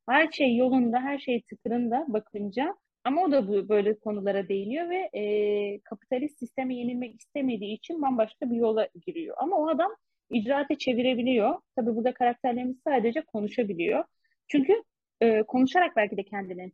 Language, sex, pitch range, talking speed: Turkish, female, 215-290 Hz, 145 wpm